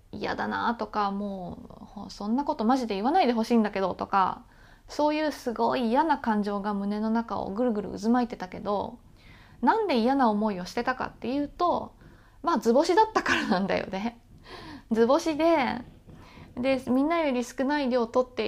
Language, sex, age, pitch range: Japanese, female, 20-39, 215-305 Hz